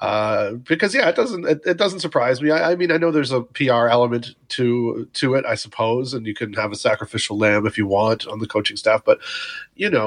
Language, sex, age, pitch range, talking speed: English, male, 30-49, 115-150 Hz, 245 wpm